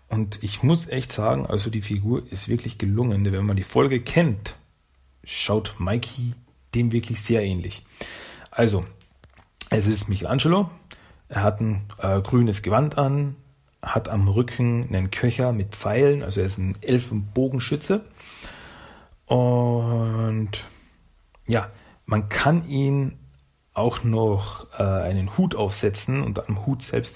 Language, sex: German, male